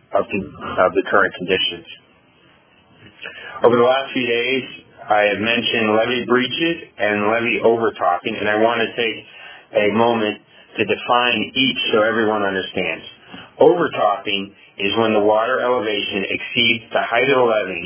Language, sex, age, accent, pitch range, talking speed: English, male, 30-49, American, 100-125 Hz, 145 wpm